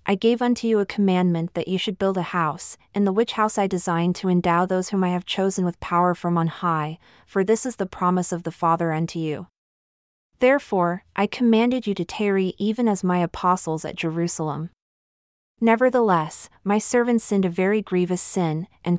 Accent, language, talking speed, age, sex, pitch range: American, English, 195 wpm, 30-49, female, 170-210 Hz